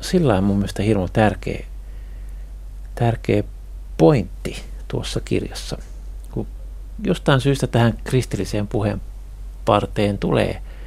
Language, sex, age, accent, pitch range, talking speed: Finnish, male, 60-79, native, 95-115 Hz, 100 wpm